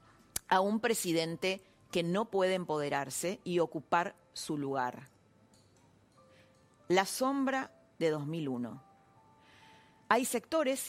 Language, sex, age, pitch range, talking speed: Spanish, female, 40-59, 150-215 Hz, 95 wpm